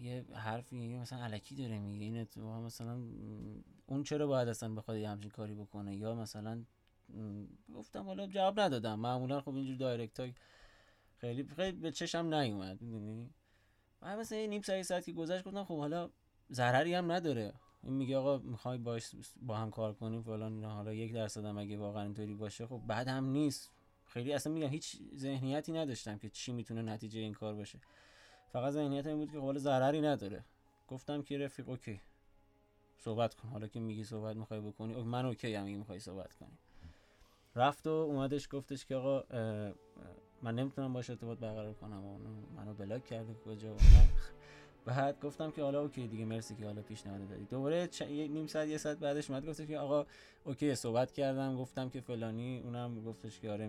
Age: 20-39